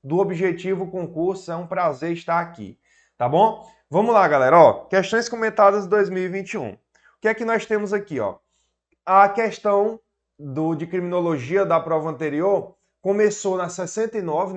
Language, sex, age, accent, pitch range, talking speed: Portuguese, male, 20-39, Brazilian, 165-205 Hz, 150 wpm